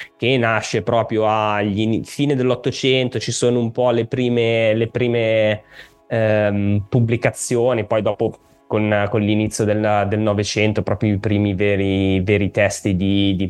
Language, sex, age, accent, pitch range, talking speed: Italian, male, 20-39, native, 105-120 Hz, 140 wpm